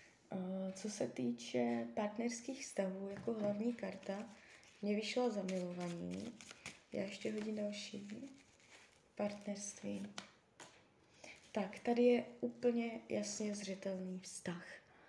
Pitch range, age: 195-220 Hz, 20-39